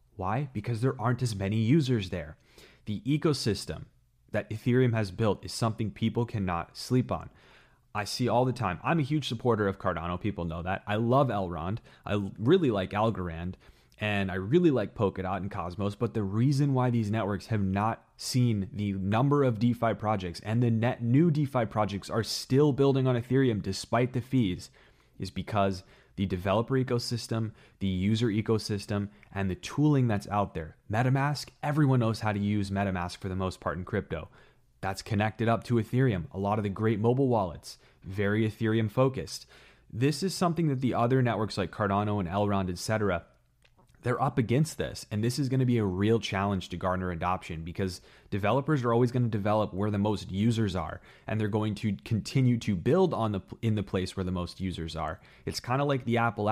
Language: English